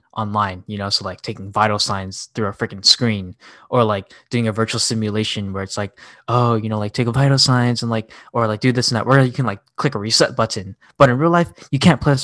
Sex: male